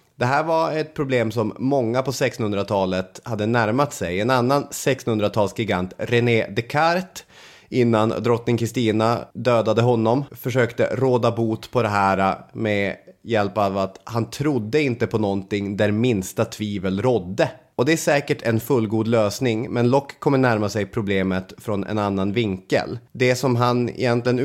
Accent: Swedish